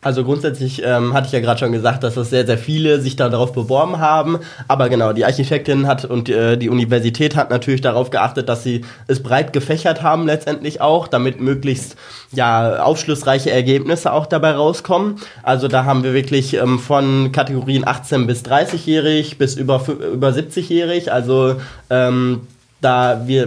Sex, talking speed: male, 175 wpm